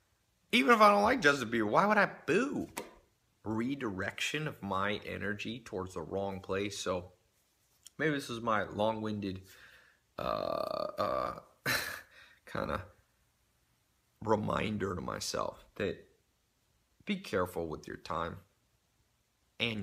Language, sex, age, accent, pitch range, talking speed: English, male, 30-49, American, 95-115 Hz, 120 wpm